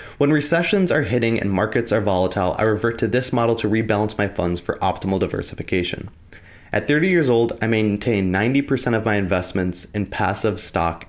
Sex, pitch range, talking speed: male, 90-125 Hz, 180 wpm